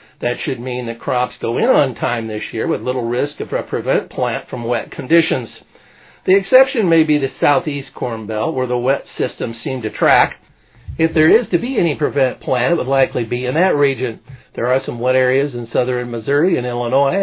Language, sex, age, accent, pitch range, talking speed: English, male, 50-69, American, 125-160 Hz, 215 wpm